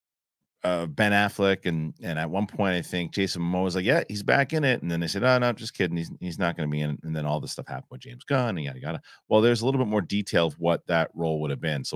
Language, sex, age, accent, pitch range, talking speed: English, male, 40-59, American, 80-105 Hz, 315 wpm